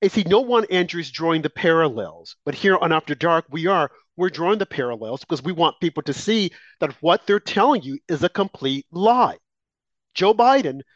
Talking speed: 195 wpm